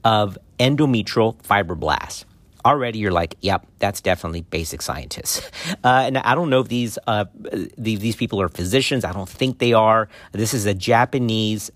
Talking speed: 165 wpm